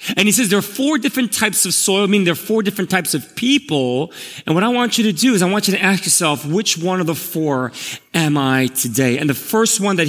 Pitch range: 155-215 Hz